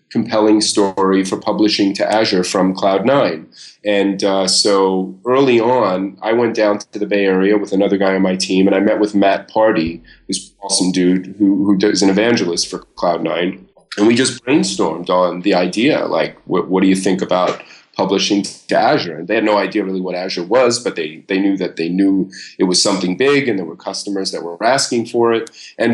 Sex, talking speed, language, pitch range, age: male, 205 wpm, English, 95-105 Hz, 30-49